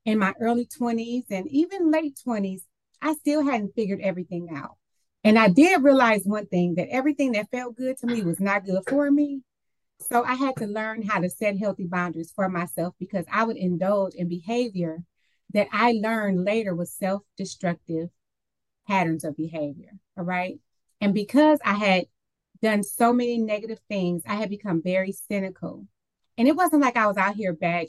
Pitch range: 180-230 Hz